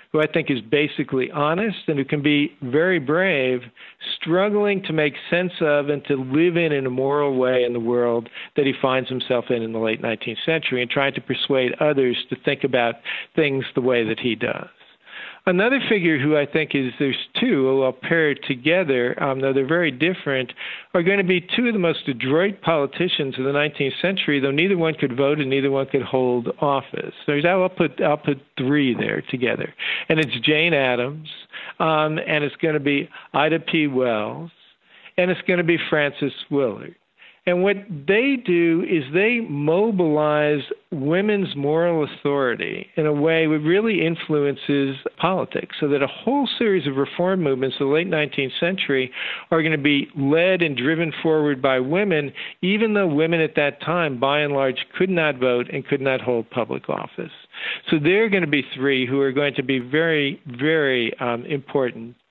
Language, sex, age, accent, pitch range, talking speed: English, male, 50-69, American, 135-165 Hz, 190 wpm